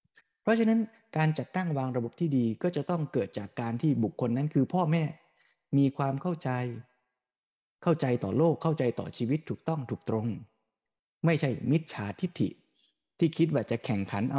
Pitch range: 115-155 Hz